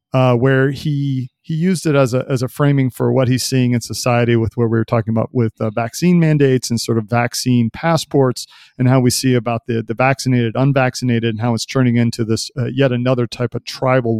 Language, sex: English, male